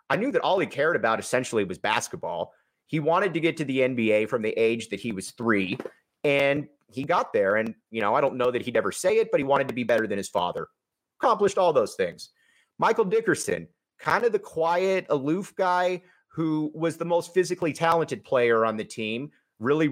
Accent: American